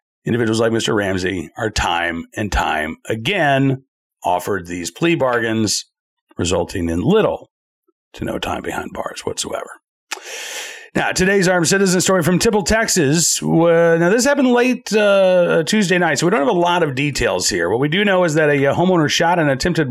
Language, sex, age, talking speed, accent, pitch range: English, male, 40-59, 170 wpm, American, 120-180 Hz